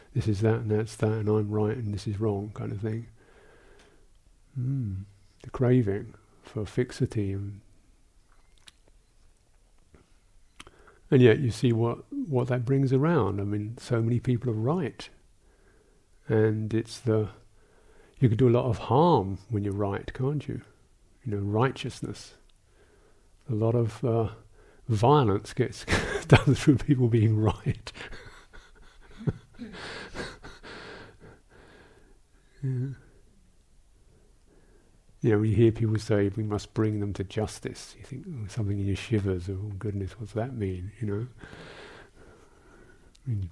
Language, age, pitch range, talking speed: English, 50-69, 100-120 Hz, 135 wpm